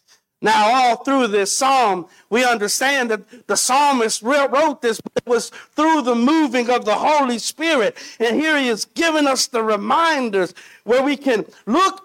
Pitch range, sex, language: 220-290 Hz, male, English